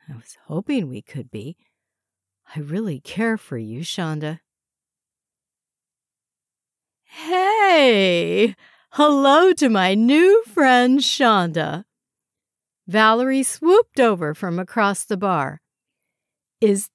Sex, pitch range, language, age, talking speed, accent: female, 160-240 Hz, English, 60-79, 95 wpm, American